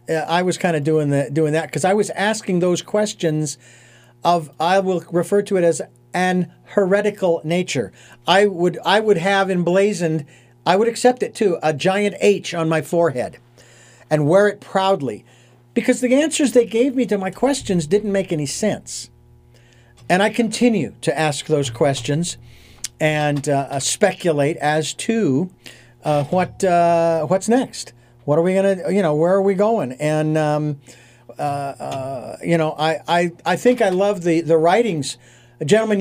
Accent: American